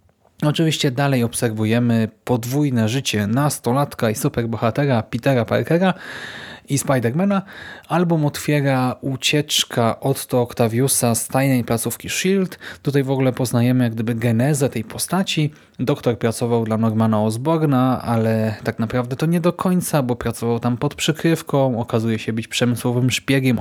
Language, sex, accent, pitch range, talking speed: Polish, male, native, 115-140 Hz, 130 wpm